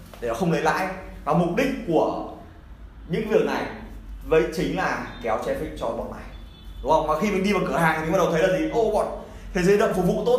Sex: male